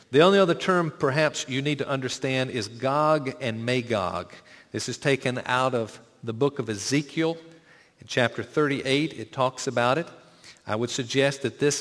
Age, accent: 50-69, American